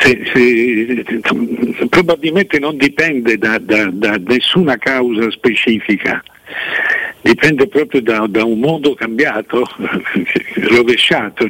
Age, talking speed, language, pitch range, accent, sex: 60-79, 110 wpm, Italian, 120-160 Hz, native, male